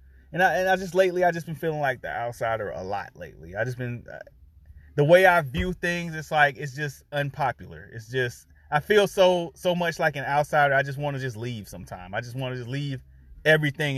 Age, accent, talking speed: 30-49, American, 230 wpm